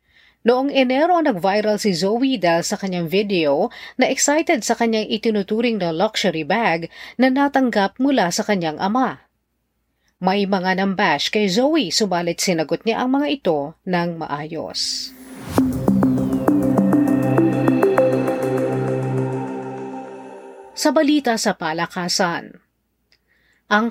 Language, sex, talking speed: Filipino, female, 105 wpm